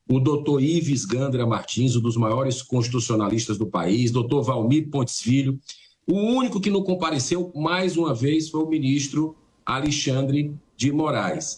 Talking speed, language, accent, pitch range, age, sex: 150 wpm, Portuguese, Brazilian, 130-175 Hz, 50-69, male